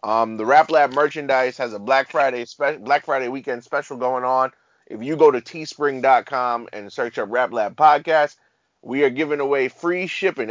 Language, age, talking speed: English, 30-49, 190 wpm